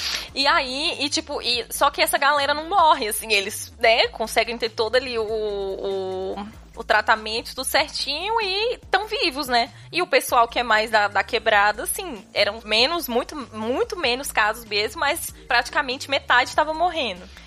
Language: Portuguese